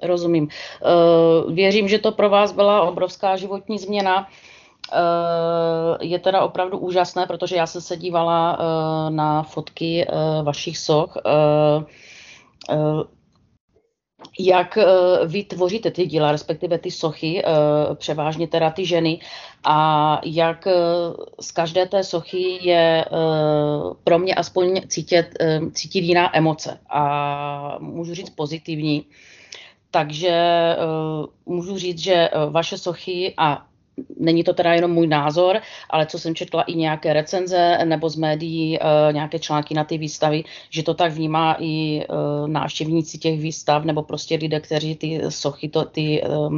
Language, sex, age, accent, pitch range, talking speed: Czech, female, 30-49, native, 155-180 Hz, 120 wpm